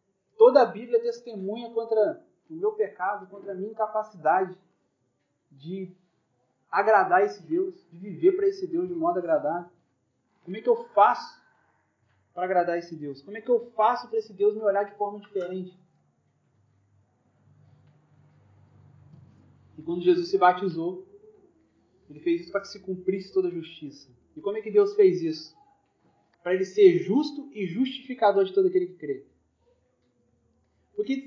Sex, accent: male, Brazilian